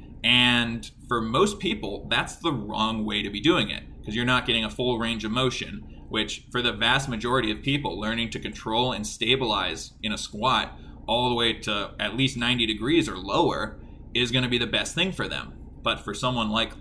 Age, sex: 20-39, male